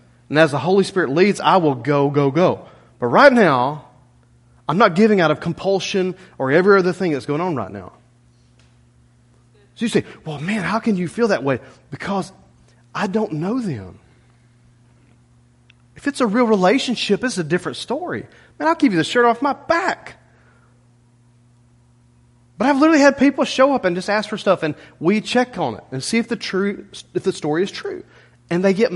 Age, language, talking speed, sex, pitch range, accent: 30-49, English, 190 wpm, male, 120-195 Hz, American